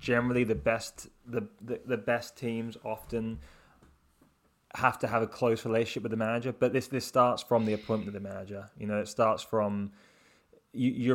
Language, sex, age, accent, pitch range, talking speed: English, male, 20-39, British, 105-115 Hz, 185 wpm